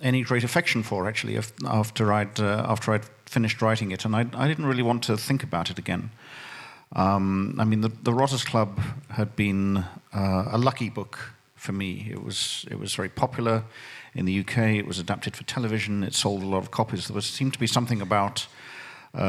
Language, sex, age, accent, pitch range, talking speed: French, male, 50-69, British, 100-120 Hz, 195 wpm